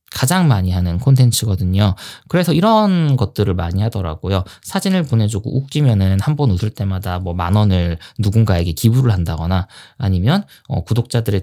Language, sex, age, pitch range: Korean, male, 20-39, 95-145 Hz